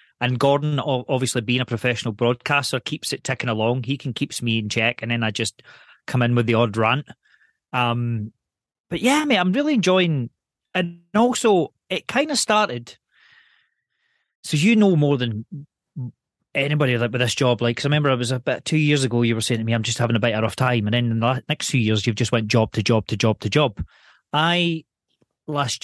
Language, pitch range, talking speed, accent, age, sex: English, 115-140 Hz, 215 wpm, British, 30-49, male